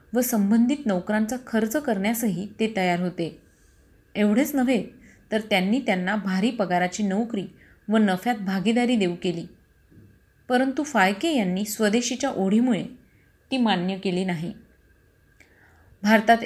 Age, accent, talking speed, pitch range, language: 30-49, native, 115 wpm, 195-245 Hz, Marathi